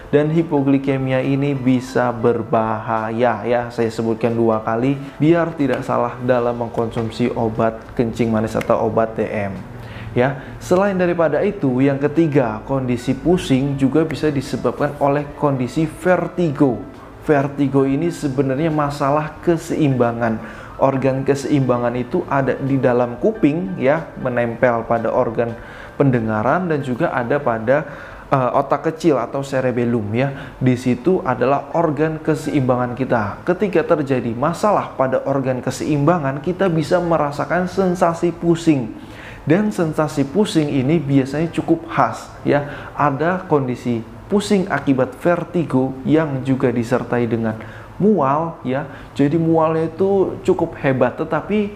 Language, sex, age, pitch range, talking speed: Indonesian, male, 20-39, 120-160 Hz, 120 wpm